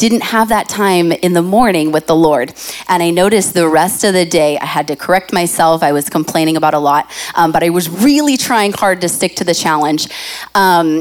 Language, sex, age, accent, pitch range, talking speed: English, female, 30-49, American, 160-205 Hz, 230 wpm